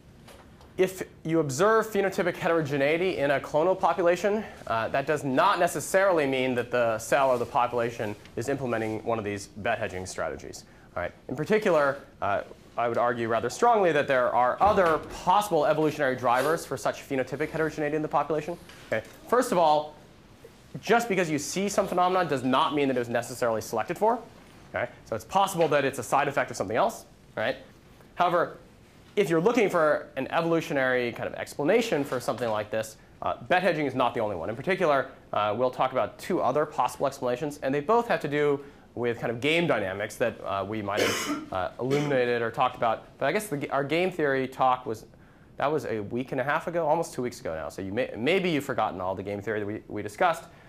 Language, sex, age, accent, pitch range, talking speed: English, male, 30-49, American, 120-165 Hz, 200 wpm